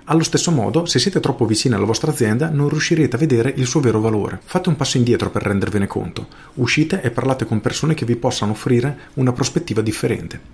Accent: native